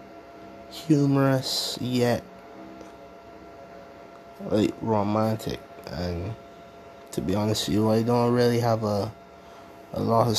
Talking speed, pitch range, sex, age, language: 105 wpm, 95-115 Hz, male, 20-39, English